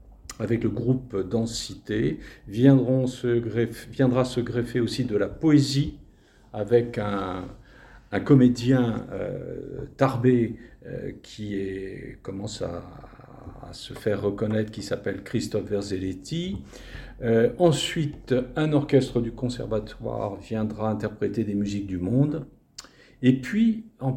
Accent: French